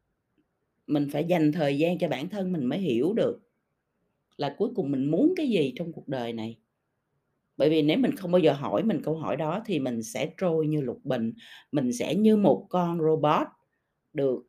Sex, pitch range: female, 145-200 Hz